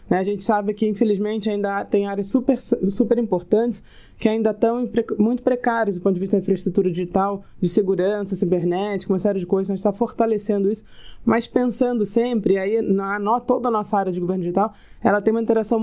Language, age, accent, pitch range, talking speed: Portuguese, 20-39, Brazilian, 195-225 Hz, 195 wpm